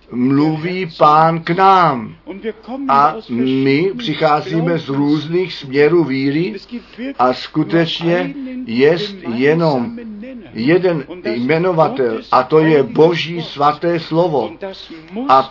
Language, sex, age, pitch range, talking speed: Czech, male, 50-69, 145-185 Hz, 95 wpm